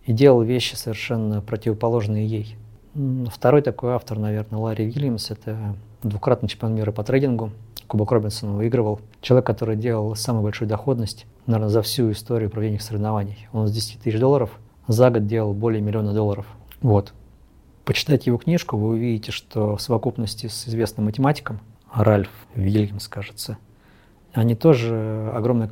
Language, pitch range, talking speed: Russian, 110-125 Hz, 145 wpm